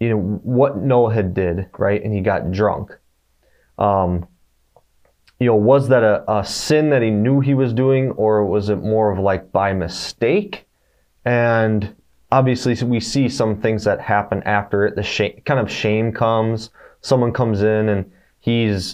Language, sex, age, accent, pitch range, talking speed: English, male, 20-39, American, 100-115 Hz, 170 wpm